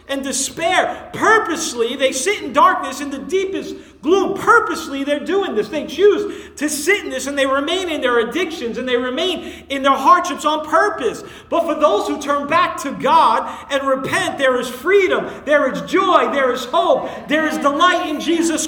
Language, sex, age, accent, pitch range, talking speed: English, male, 40-59, American, 250-325 Hz, 190 wpm